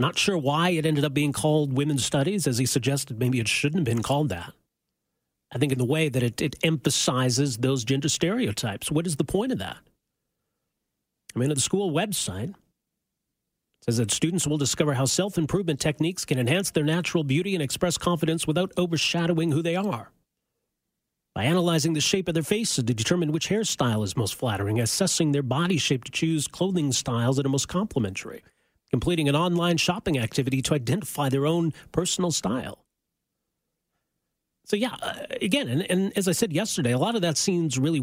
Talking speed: 185 wpm